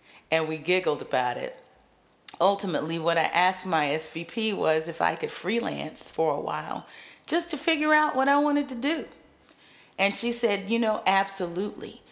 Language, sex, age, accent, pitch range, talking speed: English, female, 40-59, American, 175-250 Hz, 170 wpm